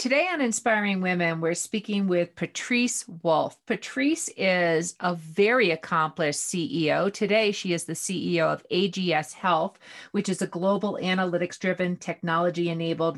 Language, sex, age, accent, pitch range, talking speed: English, female, 40-59, American, 170-210 Hz, 130 wpm